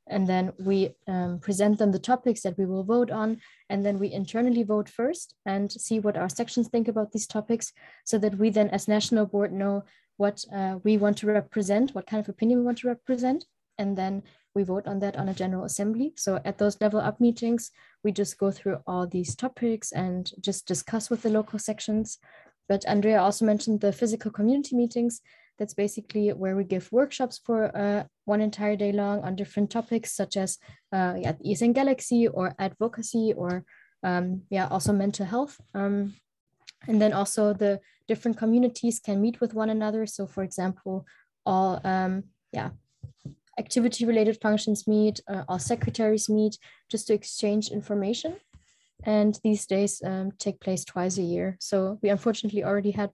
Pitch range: 195-225 Hz